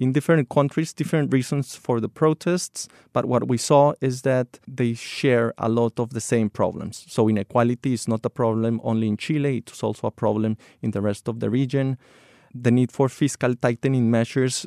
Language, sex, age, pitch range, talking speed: English, male, 20-39, 110-130 Hz, 190 wpm